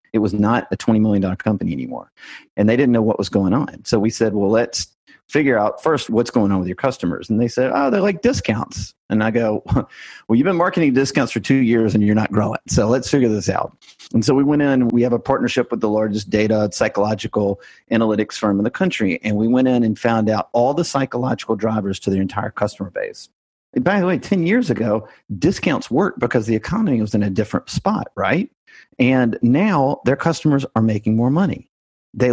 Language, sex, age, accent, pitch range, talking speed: English, male, 40-59, American, 110-135 Hz, 220 wpm